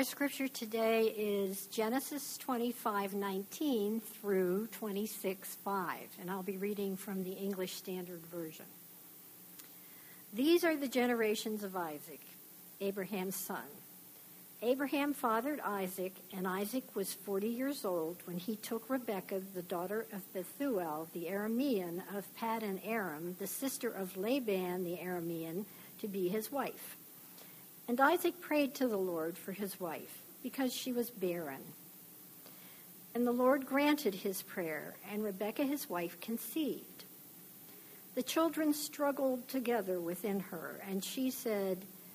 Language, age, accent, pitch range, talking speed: English, 60-79, American, 185-245 Hz, 130 wpm